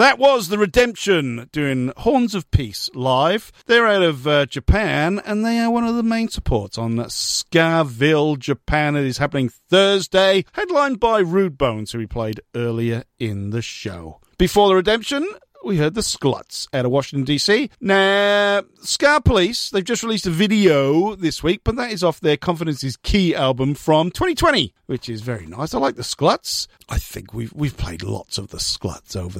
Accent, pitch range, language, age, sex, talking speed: British, 115-195 Hz, English, 50-69, male, 180 wpm